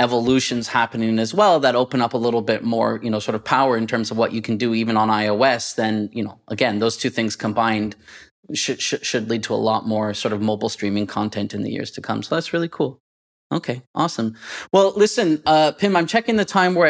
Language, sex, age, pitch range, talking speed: English, male, 20-39, 115-150 Hz, 240 wpm